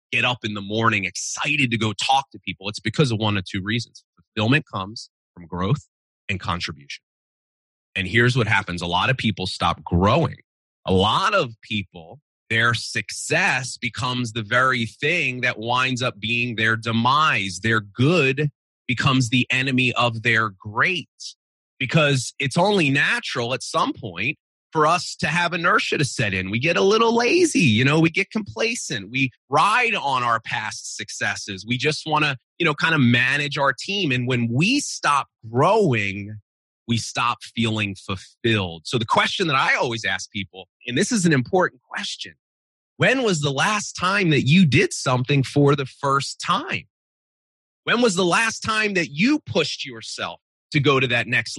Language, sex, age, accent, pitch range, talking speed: English, male, 30-49, American, 110-150 Hz, 175 wpm